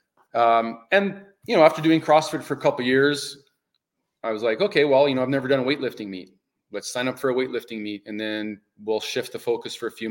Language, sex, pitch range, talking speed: English, male, 110-140 Hz, 245 wpm